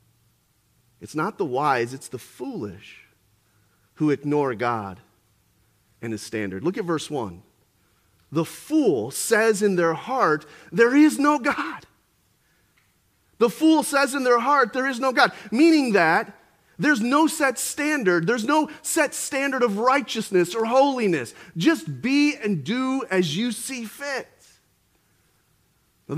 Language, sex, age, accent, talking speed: English, male, 40-59, American, 140 wpm